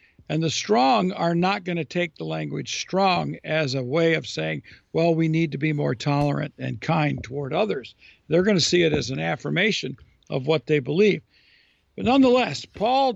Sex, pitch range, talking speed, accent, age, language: male, 140-190 Hz, 190 wpm, American, 60-79, English